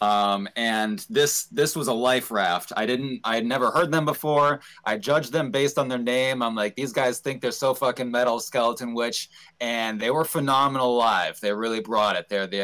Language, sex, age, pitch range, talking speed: English, male, 30-49, 110-135 Hz, 215 wpm